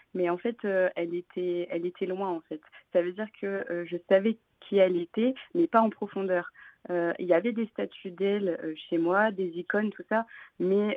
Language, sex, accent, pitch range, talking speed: French, female, French, 185-220 Hz, 220 wpm